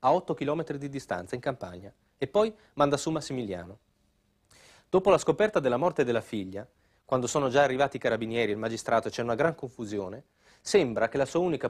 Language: Italian